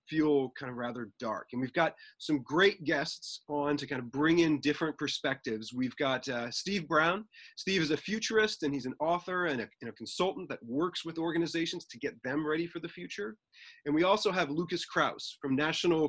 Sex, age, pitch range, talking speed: male, 30-49, 130-180 Hz, 210 wpm